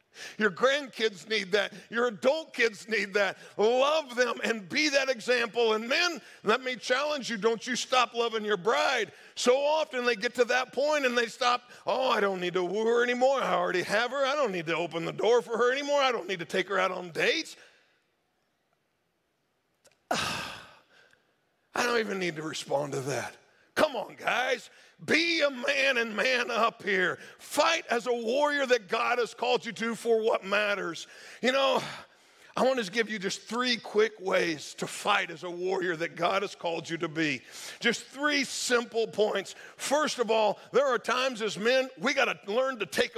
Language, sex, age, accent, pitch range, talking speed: English, male, 50-69, American, 210-275 Hz, 195 wpm